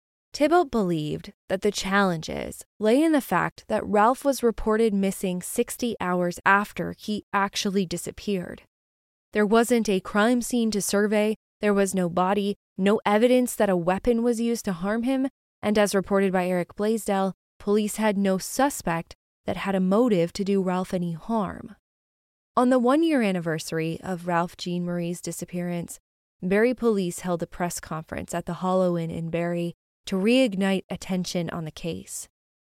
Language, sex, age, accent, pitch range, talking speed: English, female, 20-39, American, 175-215 Hz, 160 wpm